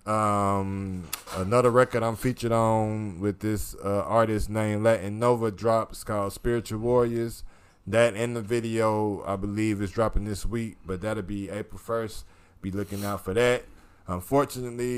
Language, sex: English, male